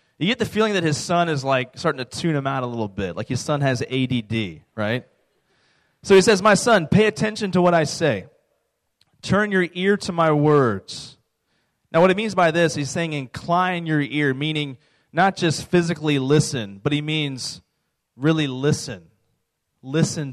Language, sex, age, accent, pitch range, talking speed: English, male, 30-49, American, 130-170 Hz, 185 wpm